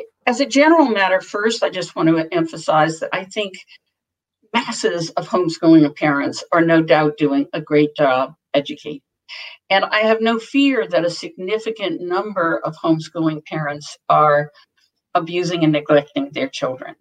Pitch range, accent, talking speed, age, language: 160-200 Hz, American, 150 wpm, 50-69, English